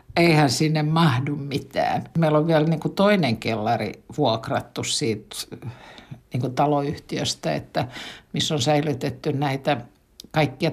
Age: 60-79